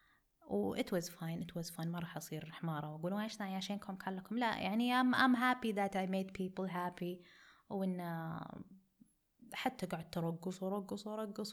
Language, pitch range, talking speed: Arabic, 175-205 Hz, 170 wpm